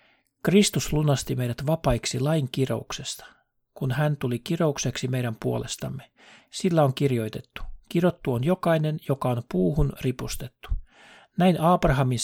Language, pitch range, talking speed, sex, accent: Finnish, 125-155 Hz, 120 wpm, male, native